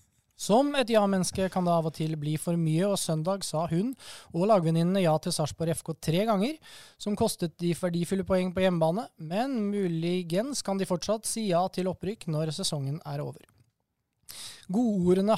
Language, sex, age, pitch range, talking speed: English, male, 20-39, 160-195 Hz, 175 wpm